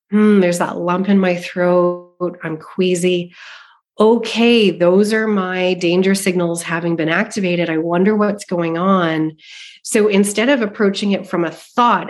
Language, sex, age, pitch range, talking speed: English, female, 30-49, 170-205 Hz, 155 wpm